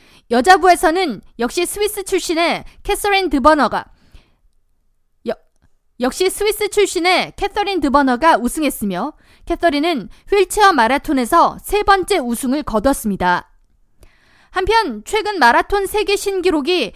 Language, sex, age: Korean, female, 20-39